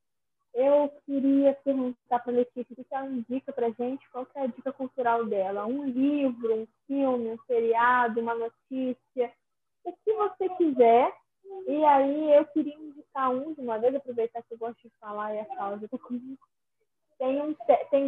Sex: female